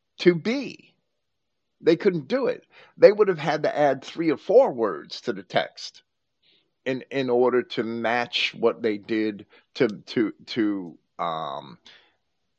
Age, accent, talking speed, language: 50-69, American, 150 wpm, English